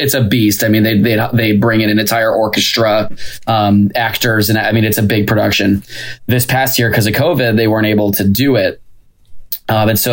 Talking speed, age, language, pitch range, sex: 220 wpm, 20-39, English, 105-120 Hz, male